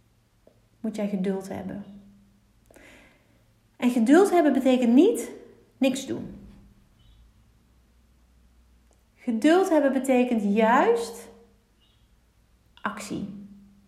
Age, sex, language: 30-49, female, Dutch